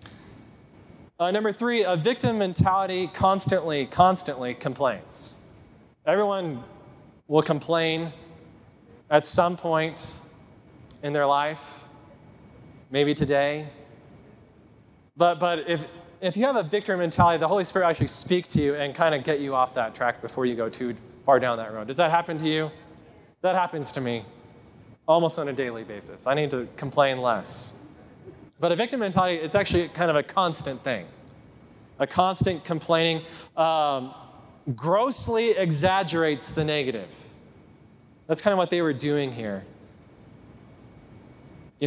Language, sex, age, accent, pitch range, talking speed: English, male, 20-39, American, 130-170 Hz, 145 wpm